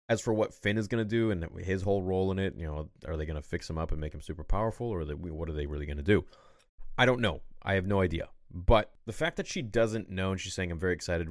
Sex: male